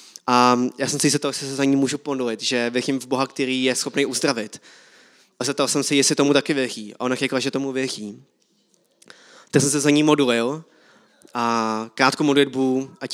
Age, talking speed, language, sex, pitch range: 20-39, 200 wpm, Czech, male, 130-150 Hz